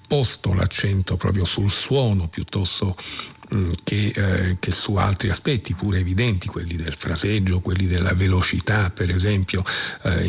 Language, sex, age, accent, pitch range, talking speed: Italian, male, 50-69, native, 95-110 Hz, 135 wpm